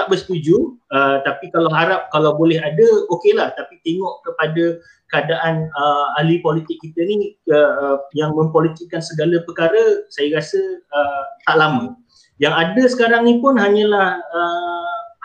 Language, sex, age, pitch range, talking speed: Malay, male, 30-49, 140-195 Hz, 140 wpm